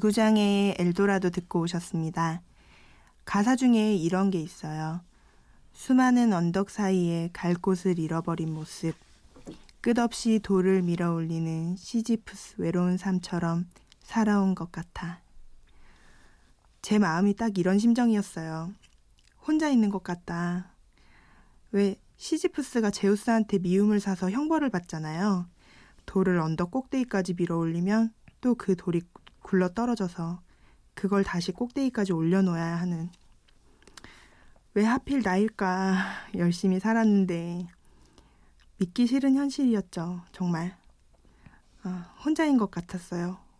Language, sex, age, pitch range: Korean, female, 20-39, 170-210 Hz